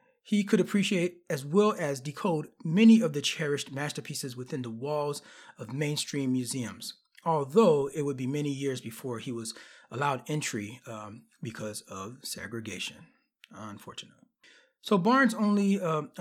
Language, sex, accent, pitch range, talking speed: English, male, American, 130-180 Hz, 140 wpm